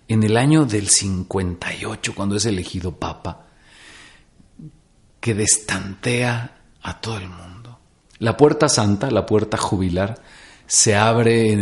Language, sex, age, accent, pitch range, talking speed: Spanish, male, 40-59, Mexican, 100-150 Hz, 125 wpm